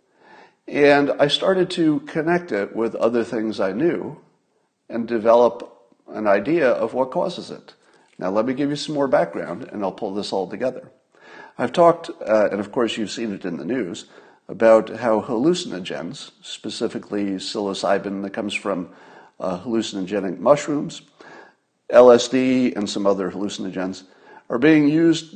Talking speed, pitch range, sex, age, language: 150 wpm, 100-145 Hz, male, 50-69, English